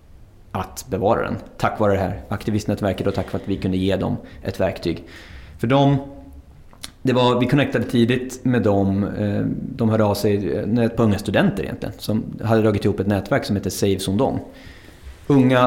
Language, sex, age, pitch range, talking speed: English, male, 30-49, 100-115 Hz, 175 wpm